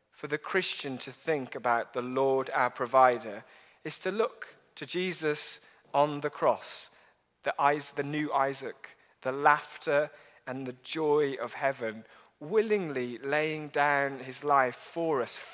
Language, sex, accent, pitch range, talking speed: English, male, British, 135-170 Hz, 145 wpm